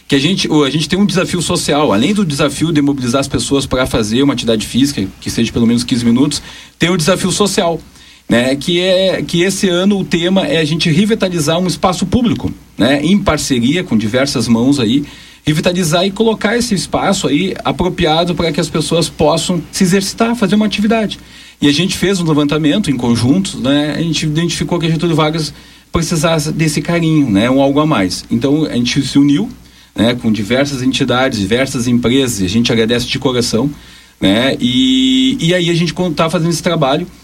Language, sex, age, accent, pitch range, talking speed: Portuguese, male, 40-59, Brazilian, 135-175 Hz, 195 wpm